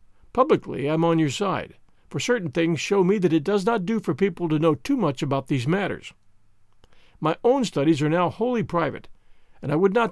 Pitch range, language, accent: 145-205 Hz, English, American